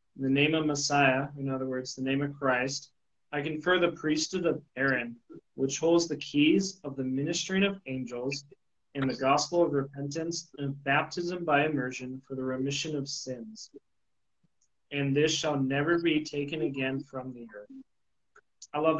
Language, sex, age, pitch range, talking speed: English, male, 20-39, 135-155 Hz, 165 wpm